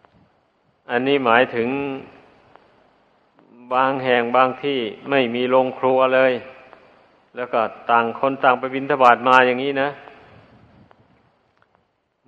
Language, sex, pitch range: Thai, male, 125-140 Hz